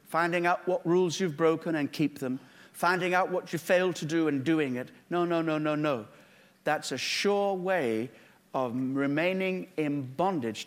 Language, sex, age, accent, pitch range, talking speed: English, male, 60-79, British, 140-205 Hz, 180 wpm